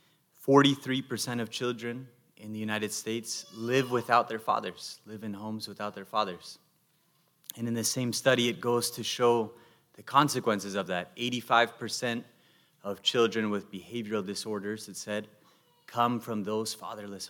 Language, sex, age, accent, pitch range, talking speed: English, male, 30-49, American, 110-135 Hz, 145 wpm